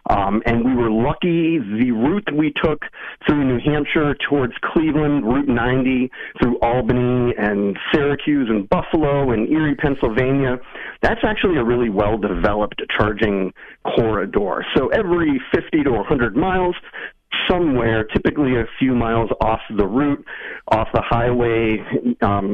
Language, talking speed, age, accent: English, 135 wpm, 40-59, American